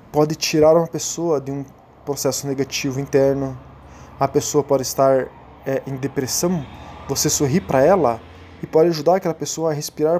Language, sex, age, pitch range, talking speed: Portuguese, male, 20-39, 130-160 Hz, 160 wpm